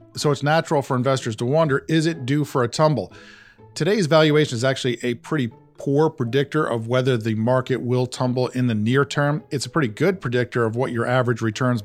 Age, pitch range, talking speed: 40-59, 120-140 Hz, 210 wpm